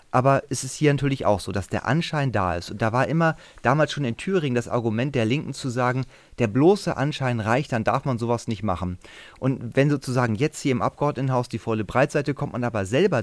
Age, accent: 30-49, German